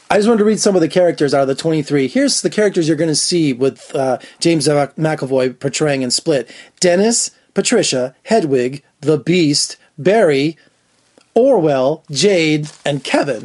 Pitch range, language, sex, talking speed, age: 150-225 Hz, English, male, 165 wpm, 30-49